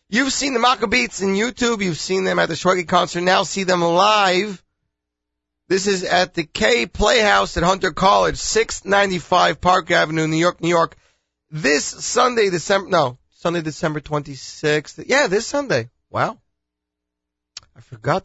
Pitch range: 140-195 Hz